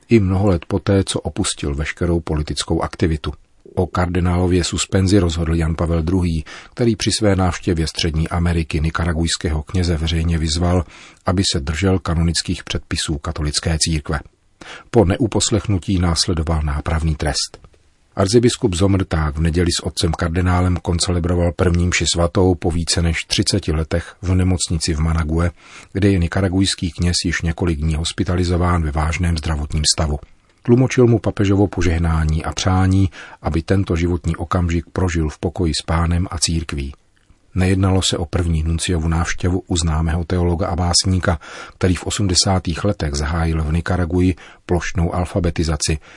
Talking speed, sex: 140 wpm, male